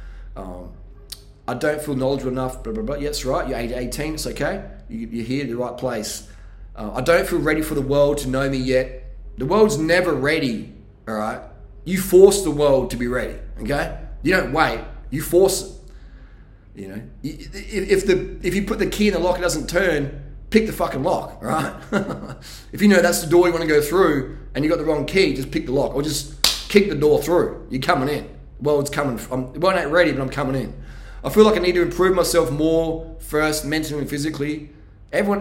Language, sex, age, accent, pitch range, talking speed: English, male, 20-39, Australian, 130-175 Hz, 220 wpm